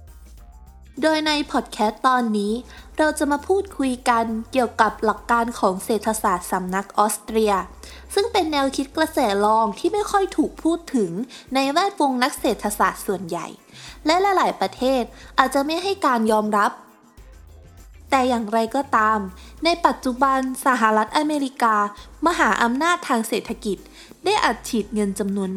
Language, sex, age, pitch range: Thai, female, 20-39, 205-290 Hz